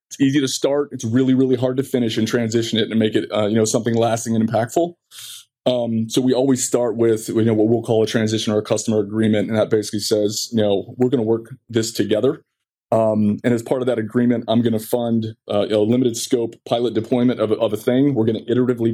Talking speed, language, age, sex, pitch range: 250 wpm, English, 20-39, male, 110-125 Hz